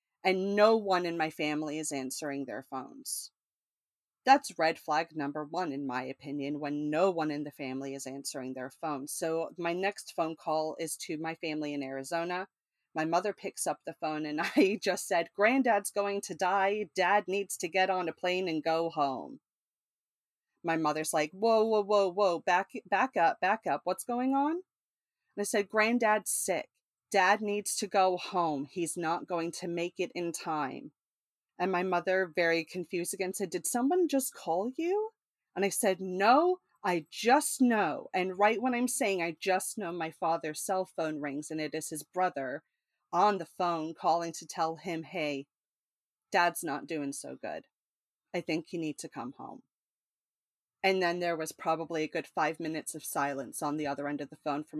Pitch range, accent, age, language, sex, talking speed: 155-195 Hz, American, 30-49, English, female, 190 wpm